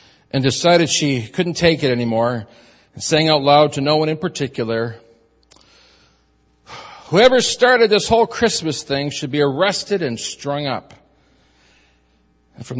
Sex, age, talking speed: male, 50-69, 140 wpm